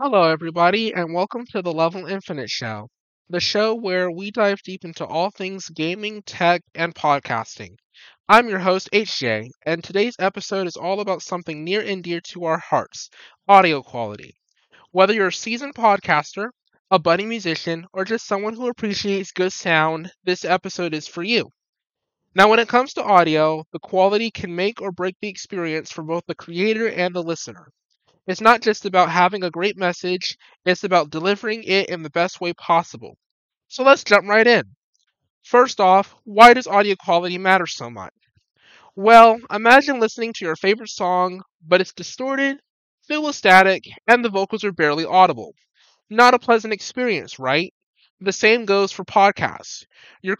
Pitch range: 170-215 Hz